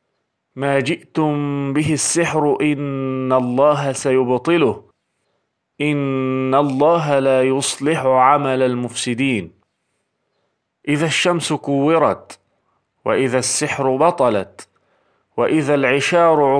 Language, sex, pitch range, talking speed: Turkish, male, 135-160 Hz, 75 wpm